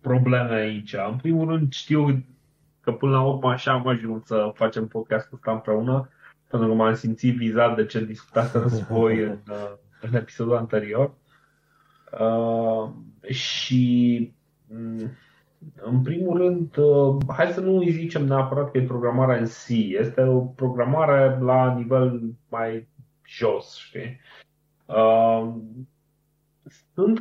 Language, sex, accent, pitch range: Romanian, male, native, 110-145 Hz